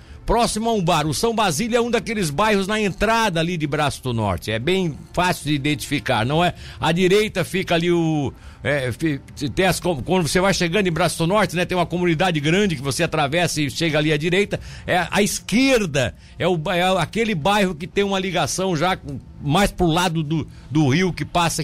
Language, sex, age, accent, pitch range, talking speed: Portuguese, male, 60-79, Brazilian, 155-200 Hz, 205 wpm